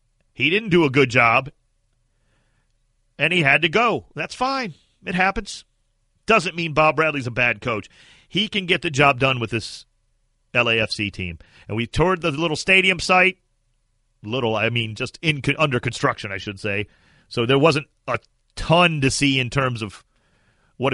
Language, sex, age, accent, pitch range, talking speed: English, male, 40-59, American, 115-170 Hz, 170 wpm